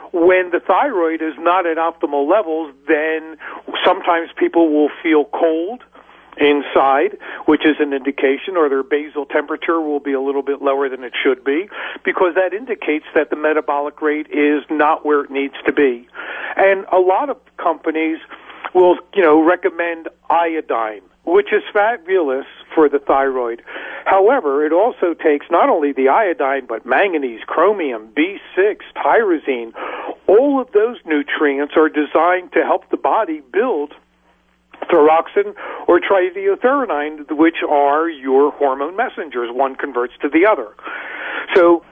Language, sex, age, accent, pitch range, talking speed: English, male, 50-69, American, 145-195 Hz, 145 wpm